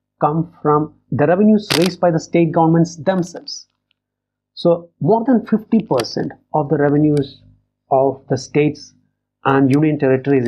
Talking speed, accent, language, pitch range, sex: 135 wpm, Indian, English, 130-175 Hz, male